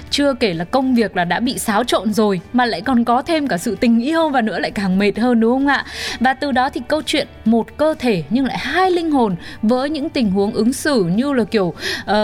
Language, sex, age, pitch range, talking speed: Vietnamese, female, 20-39, 215-280 Hz, 260 wpm